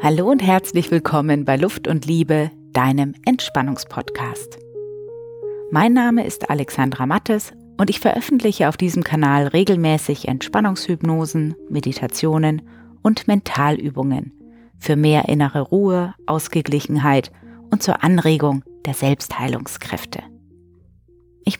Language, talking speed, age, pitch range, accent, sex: German, 105 wpm, 30-49, 140-200 Hz, German, female